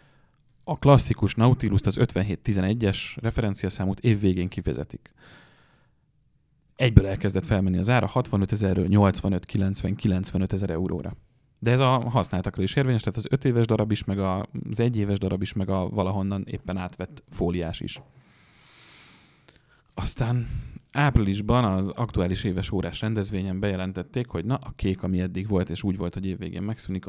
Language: English